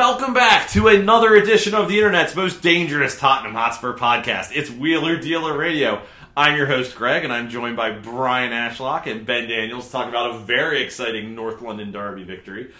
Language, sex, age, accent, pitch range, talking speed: English, male, 30-49, American, 105-140 Hz, 190 wpm